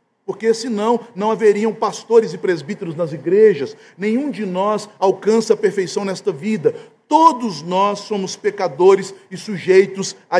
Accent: Brazilian